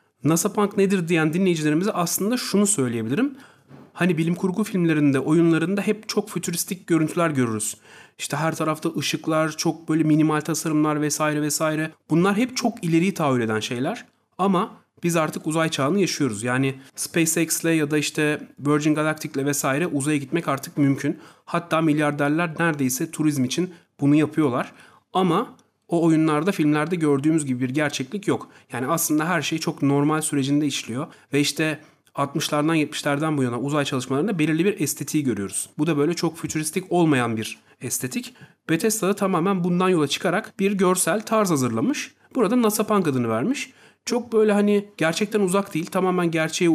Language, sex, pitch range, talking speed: Turkish, male, 145-185 Hz, 150 wpm